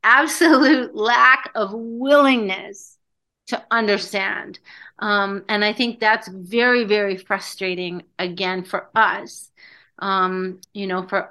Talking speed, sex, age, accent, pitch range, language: 110 wpm, female, 40-59, American, 180-210 Hz, English